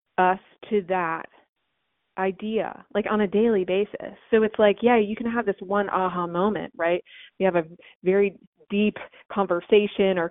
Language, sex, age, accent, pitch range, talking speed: English, female, 30-49, American, 175-205 Hz, 165 wpm